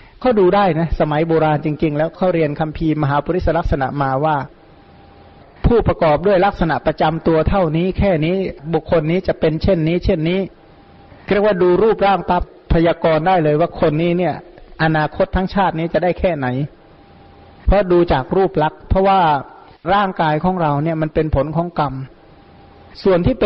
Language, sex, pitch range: Thai, male, 155-185 Hz